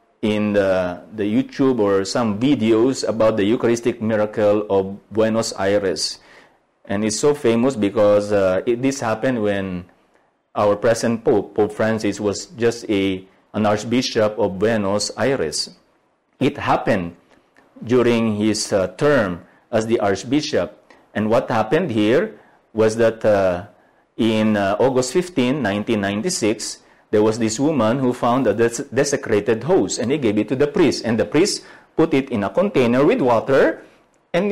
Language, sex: English, male